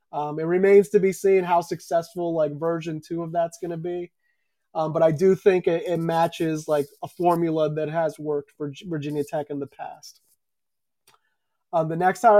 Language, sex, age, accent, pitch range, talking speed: English, male, 30-49, American, 155-190 Hz, 190 wpm